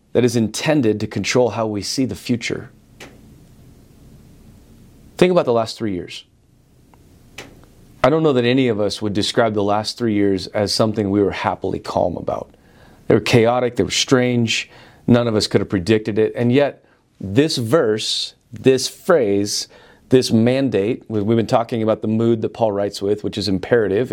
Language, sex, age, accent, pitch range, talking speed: English, male, 30-49, American, 105-125 Hz, 175 wpm